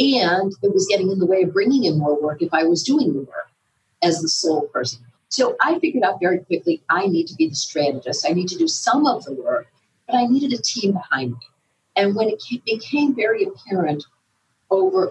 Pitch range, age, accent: 160-220 Hz, 50-69, American